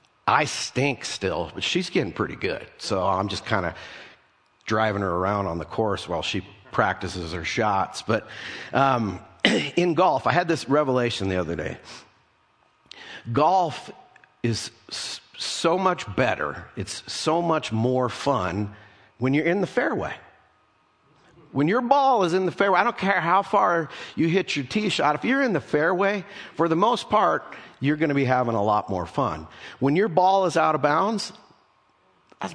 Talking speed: 170 wpm